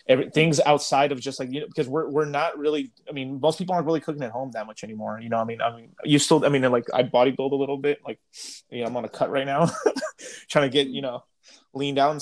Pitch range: 115-140 Hz